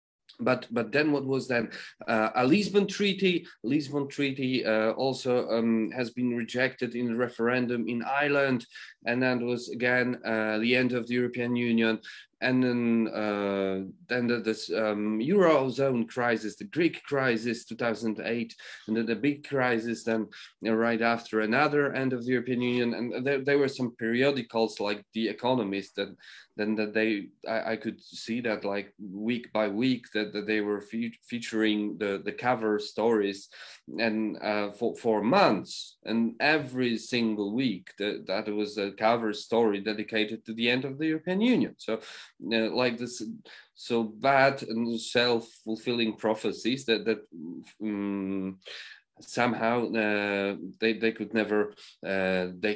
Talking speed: 155 wpm